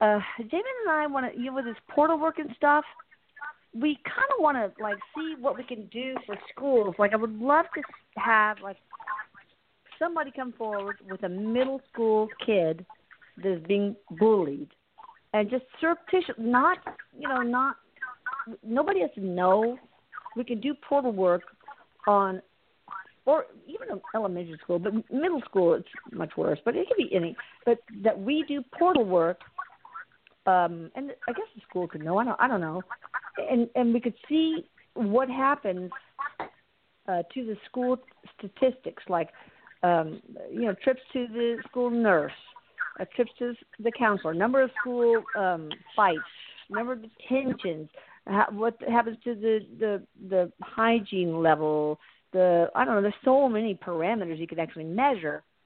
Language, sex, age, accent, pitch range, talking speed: English, female, 50-69, American, 200-270 Hz, 165 wpm